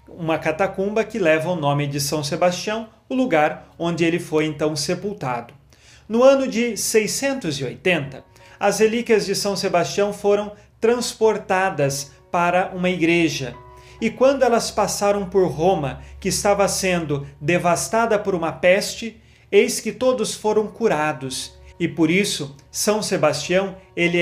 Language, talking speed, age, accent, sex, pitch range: Portuguese, 135 wpm, 40-59, Brazilian, male, 155-205 Hz